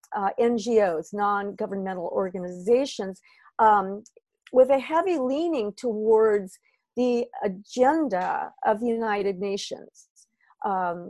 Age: 50-69